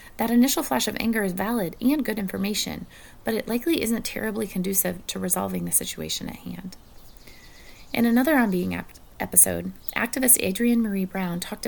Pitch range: 190-240 Hz